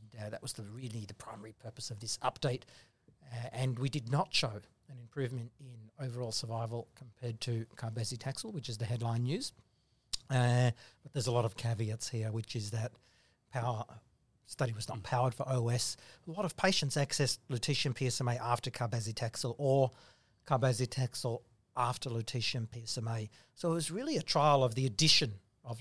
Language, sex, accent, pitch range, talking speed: English, male, Australian, 120-135 Hz, 165 wpm